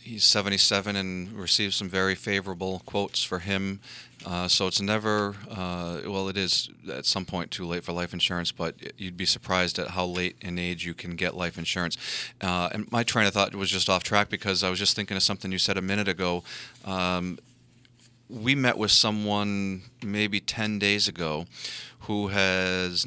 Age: 40-59